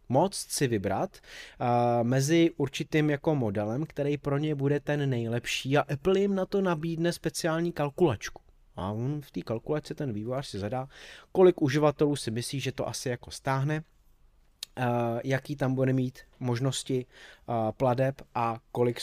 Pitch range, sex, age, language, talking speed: 120-160 Hz, male, 20-39, Czech, 160 wpm